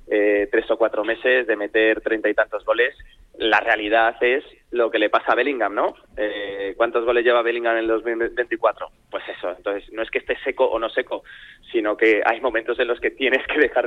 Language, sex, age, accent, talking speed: Spanish, male, 20-39, Spanish, 210 wpm